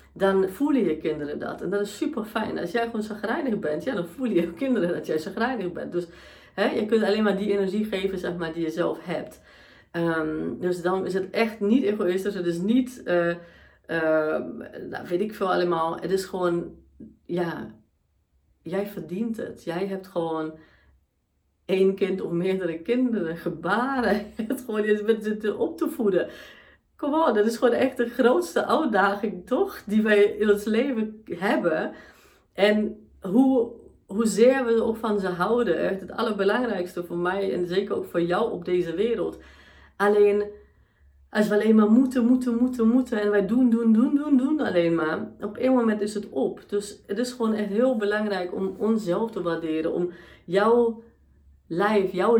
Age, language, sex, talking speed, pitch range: 40-59, Dutch, female, 180 wpm, 175-225 Hz